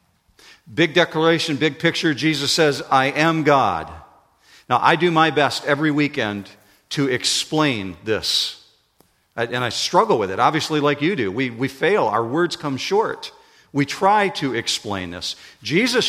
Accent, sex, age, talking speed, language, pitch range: American, male, 50-69, 155 wpm, English, 135-165 Hz